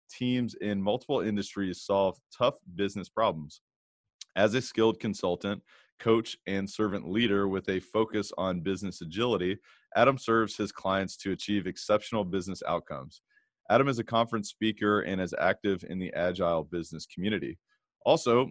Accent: American